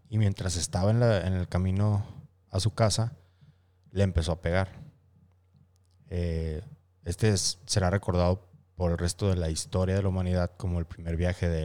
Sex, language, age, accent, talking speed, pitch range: male, Spanish, 30-49, Mexican, 175 wpm, 90-110 Hz